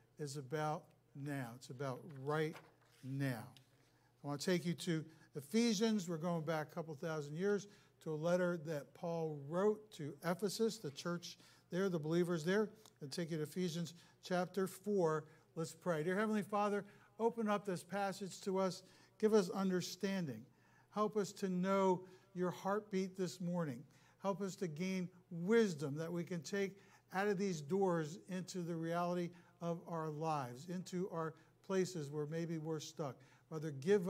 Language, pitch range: English, 155-205 Hz